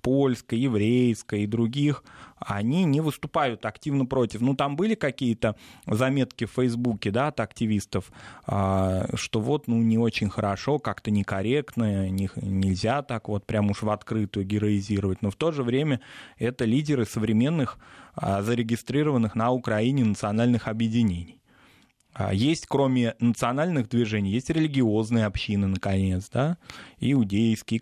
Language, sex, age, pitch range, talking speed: Russian, male, 20-39, 105-125 Hz, 125 wpm